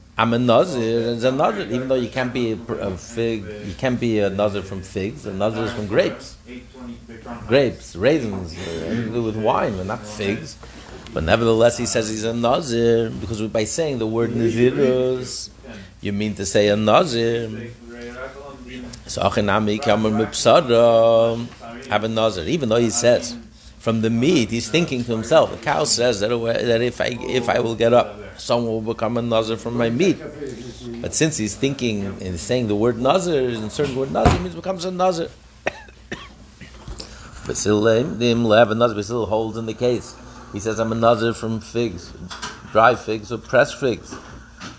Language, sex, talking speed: English, male, 170 wpm